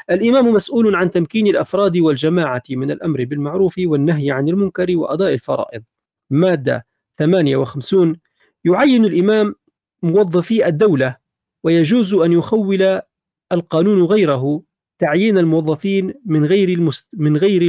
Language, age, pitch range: Arabic, 40-59, 155-195 Hz